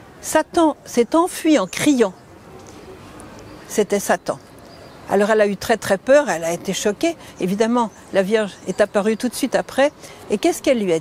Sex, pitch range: female, 200-280 Hz